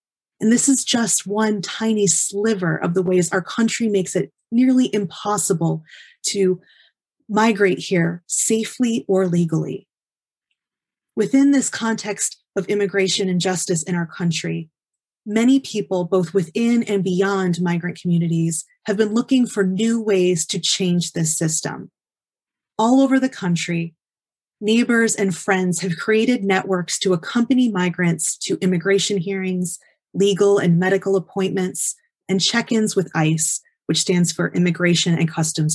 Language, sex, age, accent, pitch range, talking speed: English, female, 30-49, American, 175-215 Hz, 135 wpm